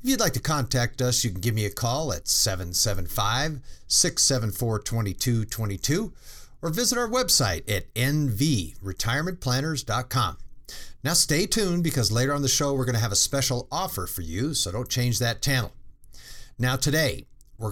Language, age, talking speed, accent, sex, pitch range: English, 50-69, 150 wpm, American, male, 100-130 Hz